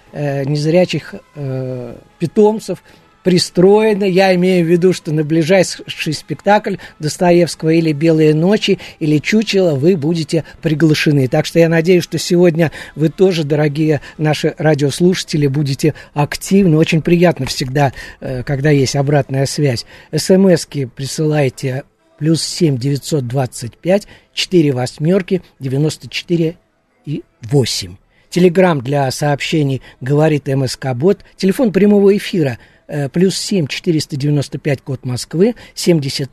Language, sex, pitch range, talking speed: Russian, male, 140-180 Hz, 115 wpm